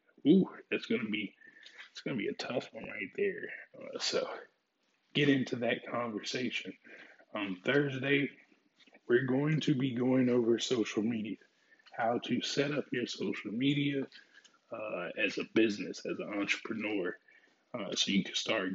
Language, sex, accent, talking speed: English, male, American, 155 wpm